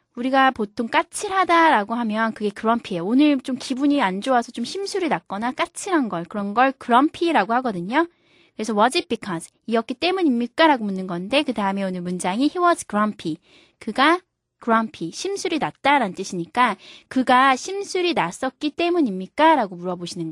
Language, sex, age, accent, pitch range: Korean, female, 20-39, native, 210-315 Hz